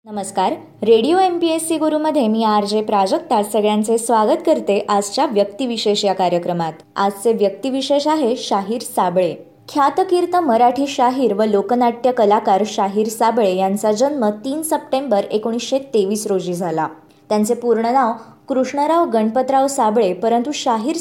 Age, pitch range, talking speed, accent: 20-39, 205-275 Hz, 135 wpm, native